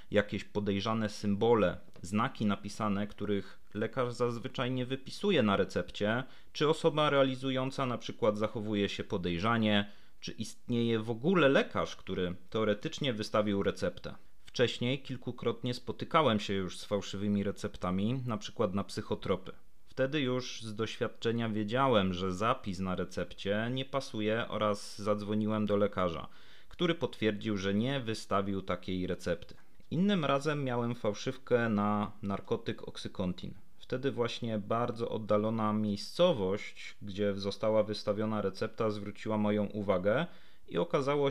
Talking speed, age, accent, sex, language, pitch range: 120 wpm, 30-49, native, male, Polish, 100-125 Hz